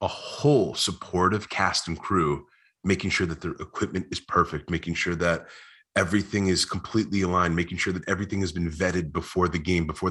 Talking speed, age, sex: 185 wpm, 30-49, male